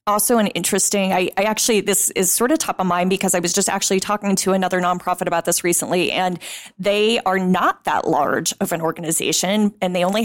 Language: English